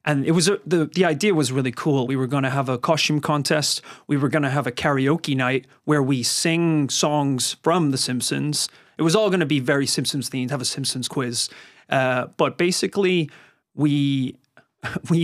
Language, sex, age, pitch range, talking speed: English, male, 30-49, 140-180 Hz, 200 wpm